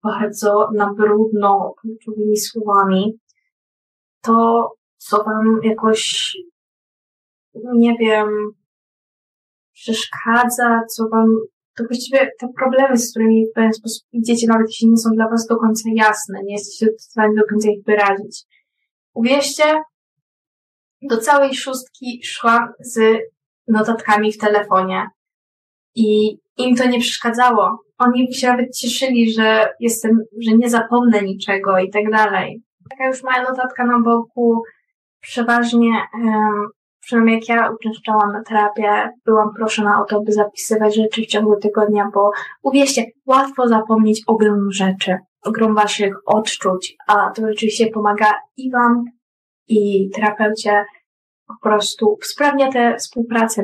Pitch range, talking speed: 210-240 Hz, 130 wpm